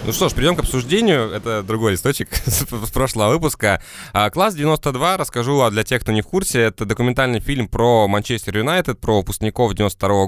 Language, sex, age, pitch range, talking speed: Russian, male, 20-39, 105-145 Hz, 180 wpm